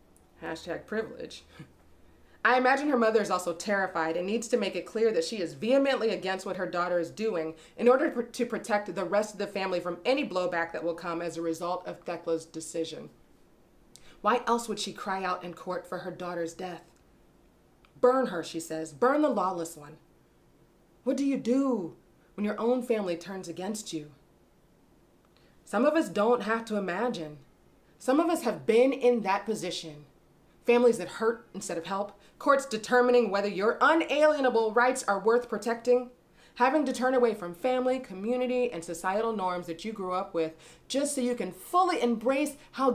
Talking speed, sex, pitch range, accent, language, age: 180 wpm, female, 175-245 Hz, American, English, 30-49